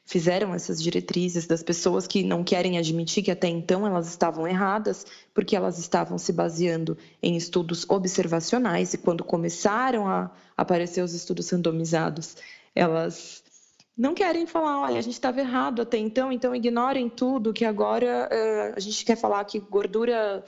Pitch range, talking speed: 175-220 Hz, 155 wpm